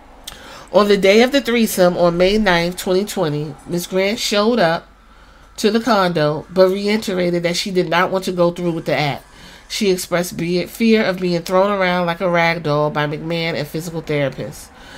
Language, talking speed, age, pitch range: English, 185 wpm, 30-49, 165-200 Hz